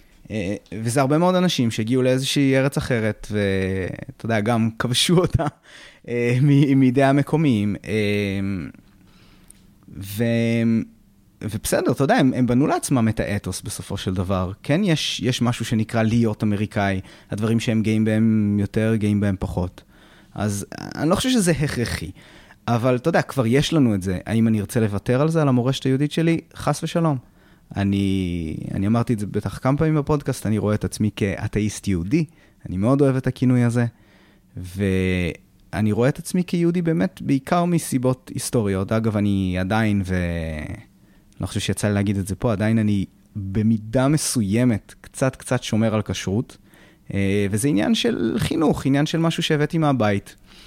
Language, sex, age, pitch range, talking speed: Hebrew, male, 20-39, 100-135 Hz, 150 wpm